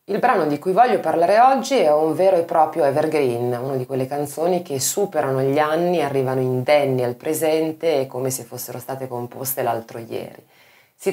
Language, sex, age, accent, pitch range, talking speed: Italian, female, 20-39, native, 125-170 Hz, 185 wpm